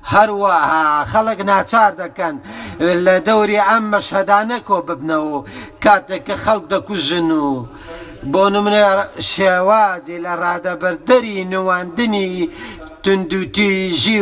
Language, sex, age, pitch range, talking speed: English, male, 50-69, 170-205 Hz, 70 wpm